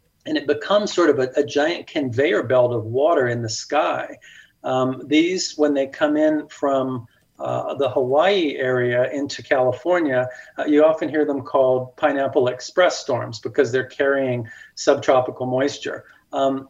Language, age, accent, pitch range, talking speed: English, 40-59, American, 130-160 Hz, 155 wpm